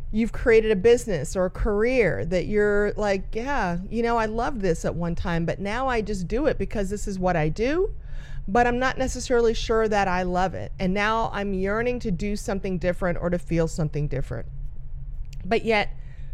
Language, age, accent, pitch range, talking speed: English, 30-49, American, 180-240 Hz, 200 wpm